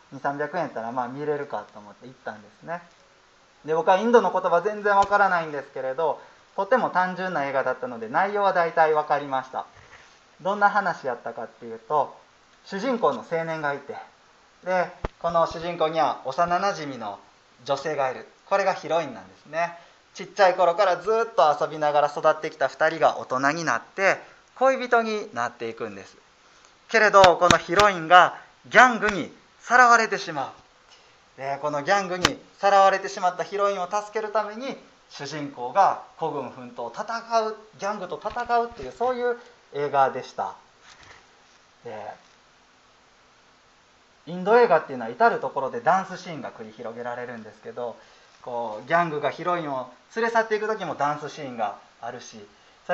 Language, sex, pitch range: Japanese, male, 140-200 Hz